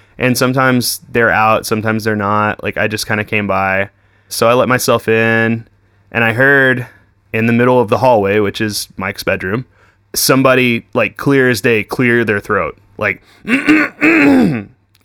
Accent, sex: American, male